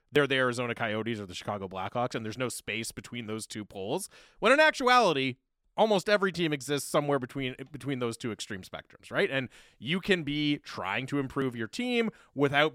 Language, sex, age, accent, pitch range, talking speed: English, male, 30-49, American, 110-145 Hz, 195 wpm